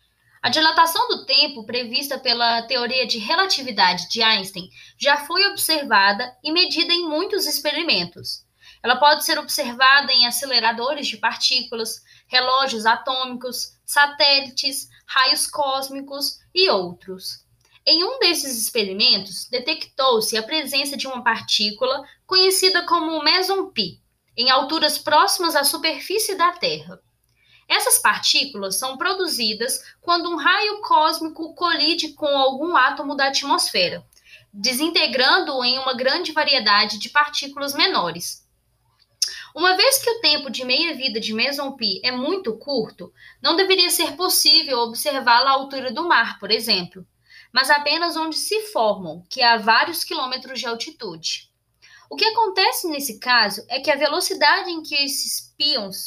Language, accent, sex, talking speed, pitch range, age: Portuguese, Brazilian, female, 130 wpm, 235-320 Hz, 10-29